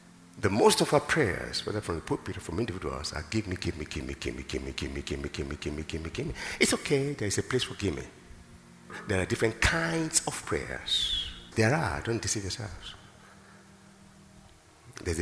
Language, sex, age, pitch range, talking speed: English, male, 50-69, 80-110 Hz, 220 wpm